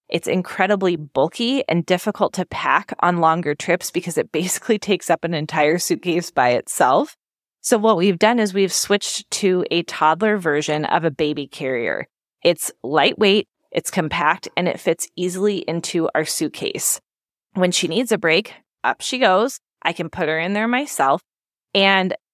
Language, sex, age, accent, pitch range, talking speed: English, female, 20-39, American, 165-200 Hz, 165 wpm